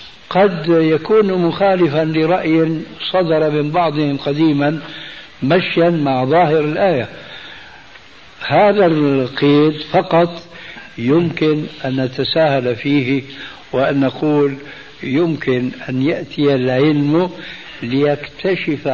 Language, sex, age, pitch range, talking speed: Arabic, male, 60-79, 135-170 Hz, 80 wpm